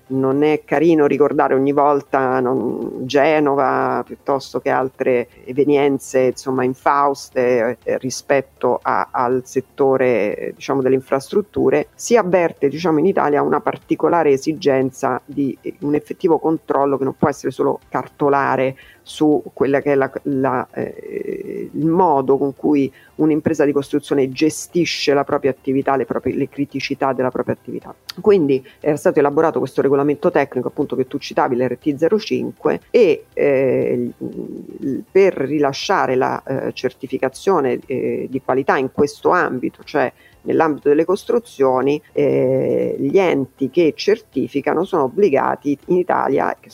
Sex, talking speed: female, 135 wpm